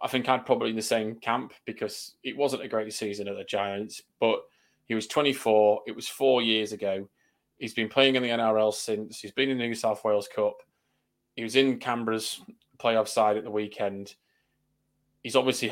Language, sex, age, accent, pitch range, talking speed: English, male, 20-39, British, 105-125 Hz, 200 wpm